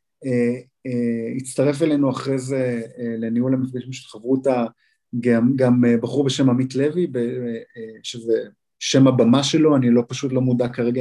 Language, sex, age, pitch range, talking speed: Hebrew, male, 30-49, 125-190 Hz, 165 wpm